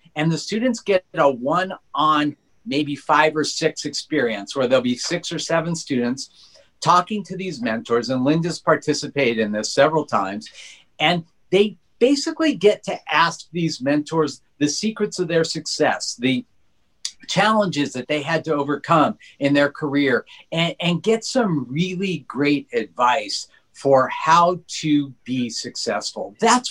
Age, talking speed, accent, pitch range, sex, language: 50-69, 150 wpm, American, 140-190 Hz, male, English